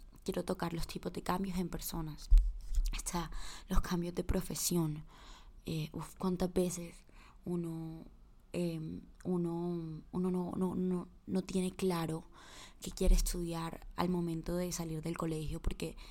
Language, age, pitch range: Spanish, 20-39, 165-185 Hz